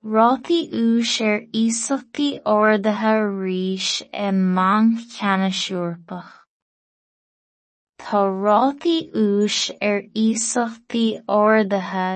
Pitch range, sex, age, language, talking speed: 195-230 Hz, female, 20-39, English, 90 wpm